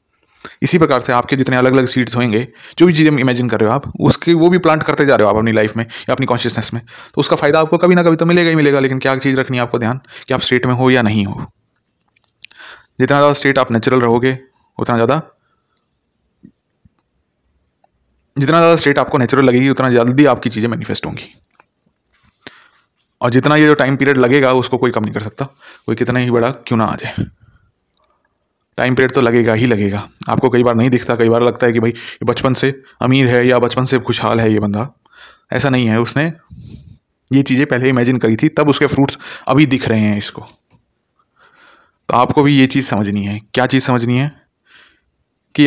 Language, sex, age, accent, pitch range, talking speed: Hindi, male, 30-49, native, 115-140 Hz, 205 wpm